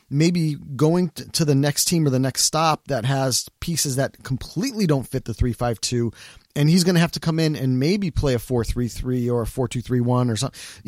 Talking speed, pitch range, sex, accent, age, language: 205 wpm, 120-155 Hz, male, American, 30-49, English